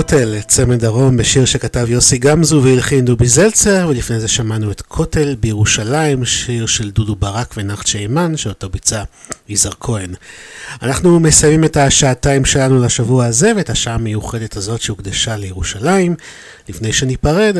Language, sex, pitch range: Hebrew, male, 110-145 Hz